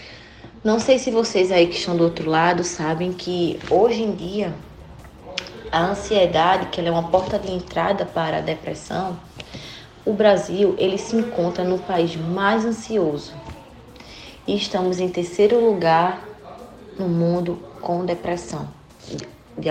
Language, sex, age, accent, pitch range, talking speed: Portuguese, female, 20-39, Brazilian, 170-220 Hz, 140 wpm